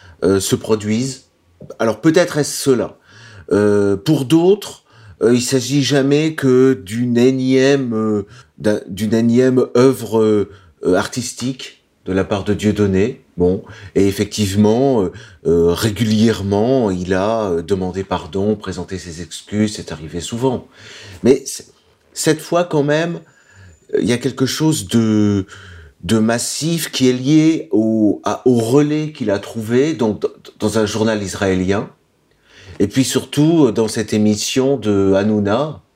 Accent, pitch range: French, 100-130 Hz